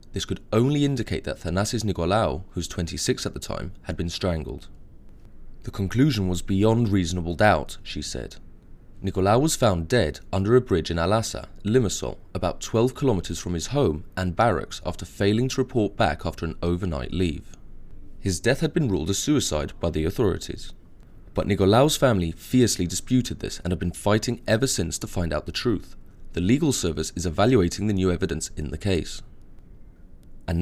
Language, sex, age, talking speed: English, male, 20-39, 175 wpm